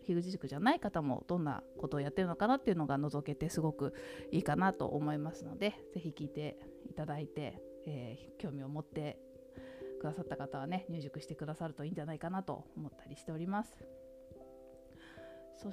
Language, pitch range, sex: Japanese, 140-195 Hz, female